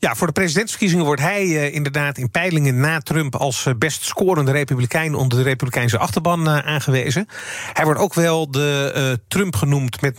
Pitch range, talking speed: 130-170 Hz, 170 wpm